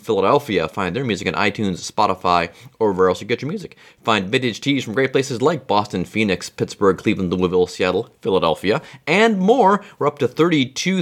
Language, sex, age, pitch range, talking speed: English, male, 30-49, 110-155 Hz, 185 wpm